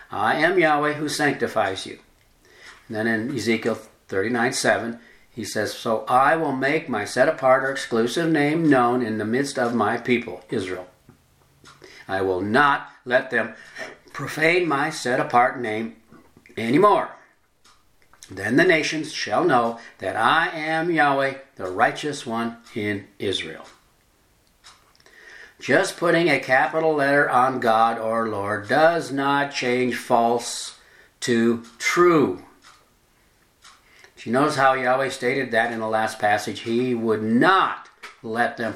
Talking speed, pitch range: 130 wpm, 115-145 Hz